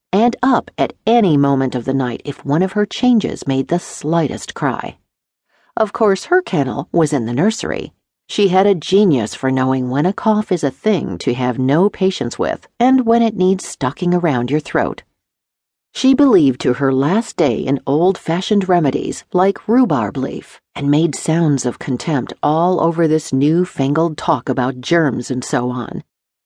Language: English